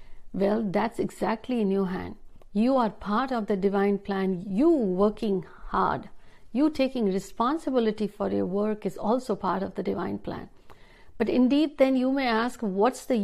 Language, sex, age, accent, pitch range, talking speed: Hindi, female, 60-79, native, 195-240 Hz, 170 wpm